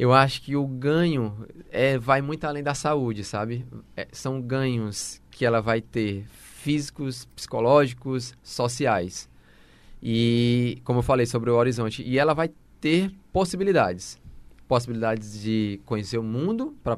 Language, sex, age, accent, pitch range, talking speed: Portuguese, male, 20-39, Brazilian, 115-155 Hz, 135 wpm